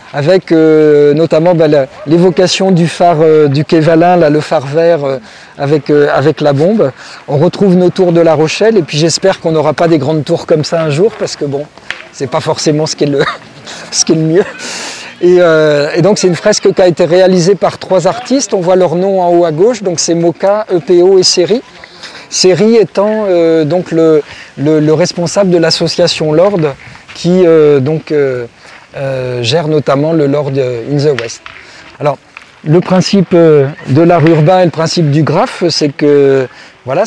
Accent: French